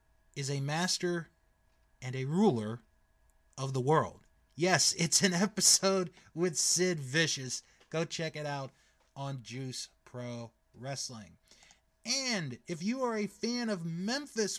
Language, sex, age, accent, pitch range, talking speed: English, male, 30-49, American, 125-190 Hz, 130 wpm